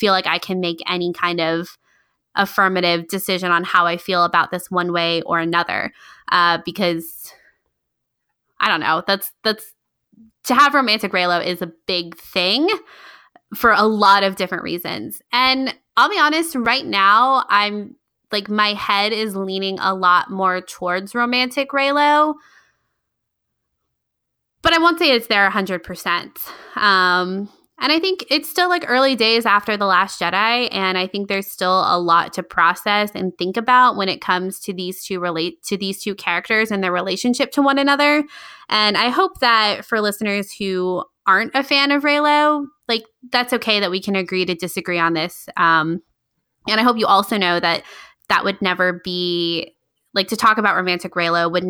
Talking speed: 175 wpm